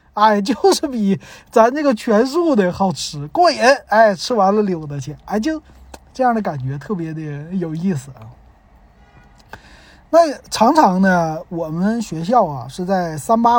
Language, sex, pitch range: Chinese, male, 160-230 Hz